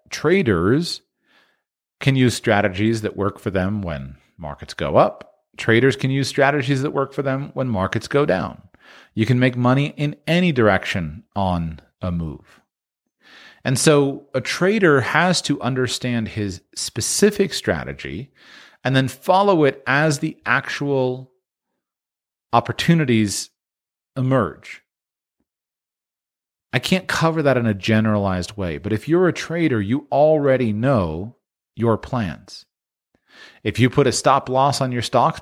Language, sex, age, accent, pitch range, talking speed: English, male, 40-59, American, 105-140 Hz, 135 wpm